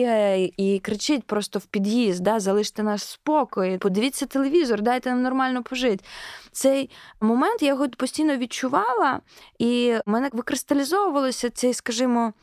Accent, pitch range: native, 195-265 Hz